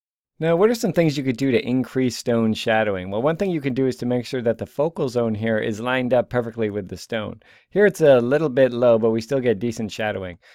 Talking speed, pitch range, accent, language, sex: 260 wpm, 110-135 Hz, American, English, male